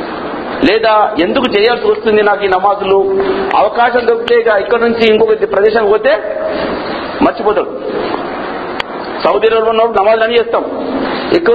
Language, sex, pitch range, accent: Telugu, male, 210-310 Hz, native